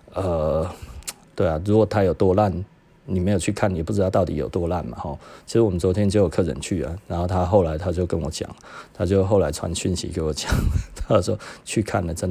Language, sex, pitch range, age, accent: Chinese, male, 85-105 Hz, 30-49, native